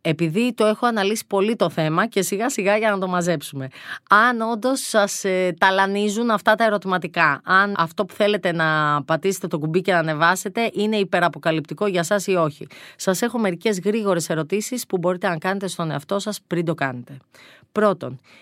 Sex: female